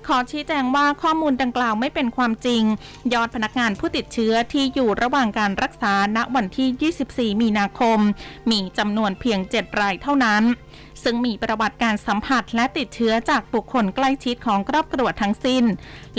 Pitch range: 210-255 Hz